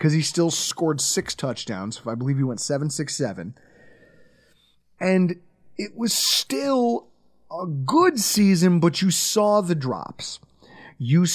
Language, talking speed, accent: English, 125 wpm, American